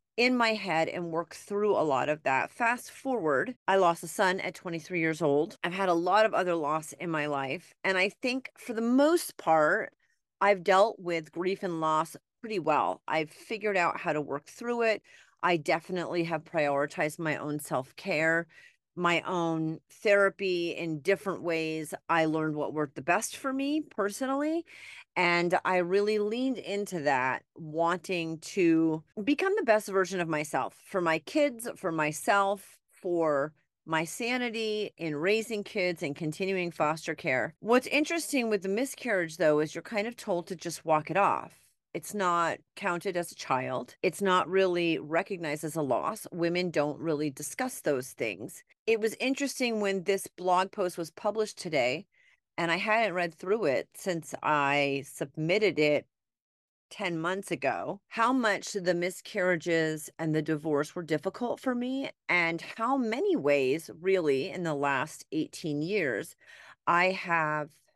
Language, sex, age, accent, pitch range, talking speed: English, female, 30-49, American, 160-210 Hz, 165 wpm